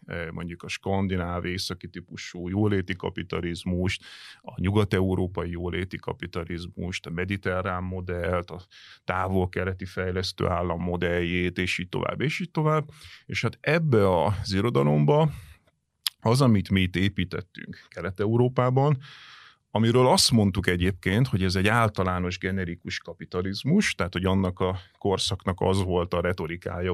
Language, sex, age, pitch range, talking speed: Hungarian, male, 30-49, 90-110 Hz, 120 wpm